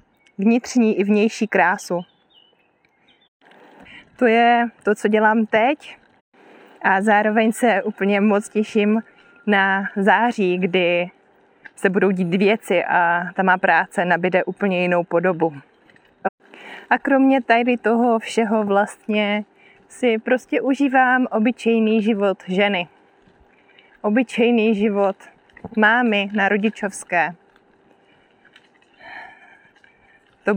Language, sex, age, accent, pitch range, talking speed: Czech, female, 20-39, native, 195-235 Hz, 95 wpm